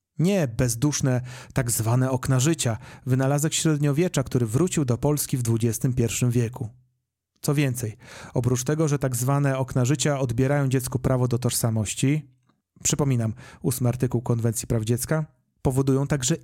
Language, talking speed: Polish, 135 wpm